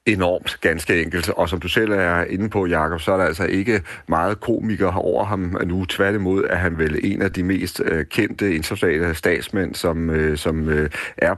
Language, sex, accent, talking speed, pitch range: Danish, male, native, 190 wpm, 85-100 Hz